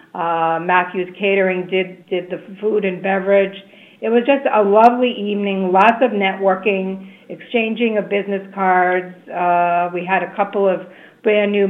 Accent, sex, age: American, female, 50-69